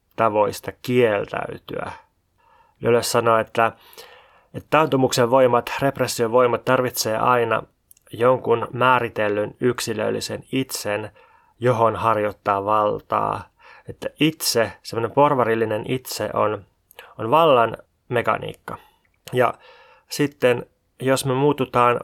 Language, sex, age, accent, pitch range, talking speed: Finnish, male, 20-39, native, 110-135 Hz, 85 wpm